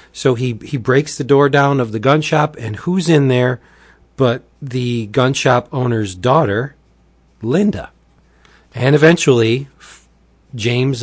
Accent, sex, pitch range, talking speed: American, male, 105-140 Hz, 135 wpm